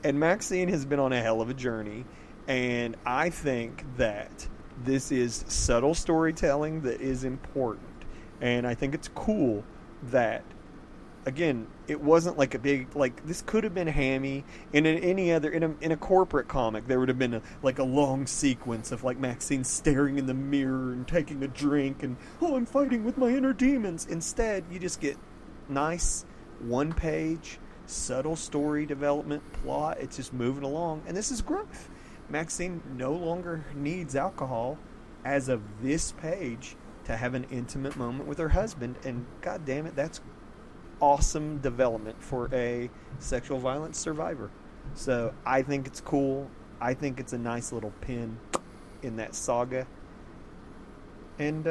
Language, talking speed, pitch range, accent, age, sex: English, 160 wpm, 125-155 Hz, American, 30-49, male